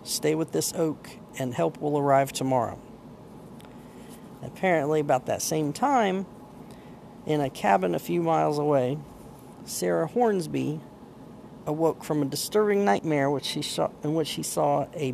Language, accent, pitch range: English, American, 140-165 Hz